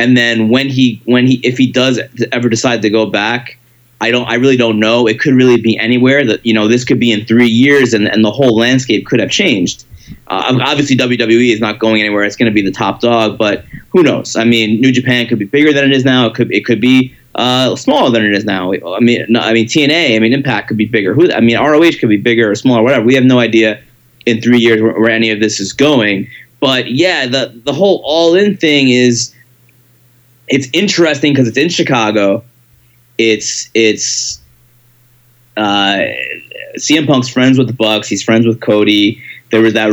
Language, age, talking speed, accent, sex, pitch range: English, 20-39, 220 wpm, American, male, 110-125 Hz